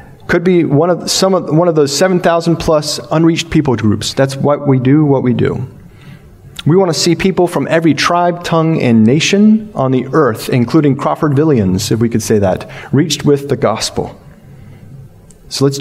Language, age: English, 30-49